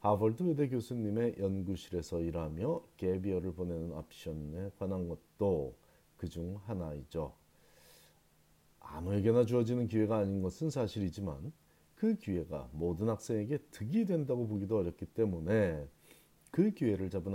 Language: Korean